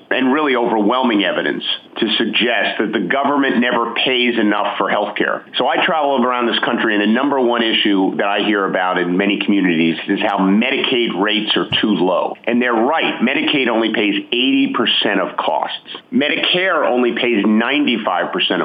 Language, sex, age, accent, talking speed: English, male, 50-69, American, 165 wpm